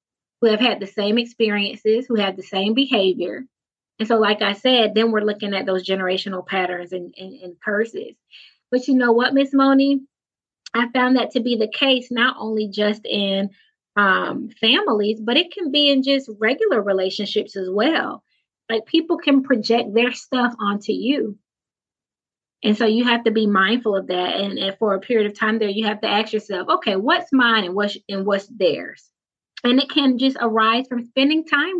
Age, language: 20-39, English